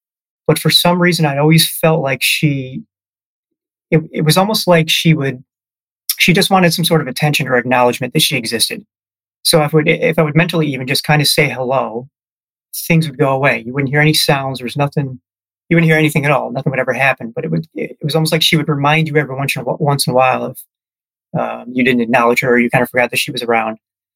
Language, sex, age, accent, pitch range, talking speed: English, male, 30-49, American, 125-160 Hz, 230 wpm